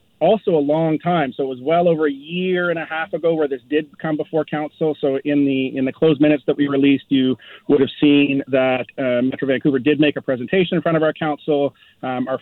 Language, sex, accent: English, male, American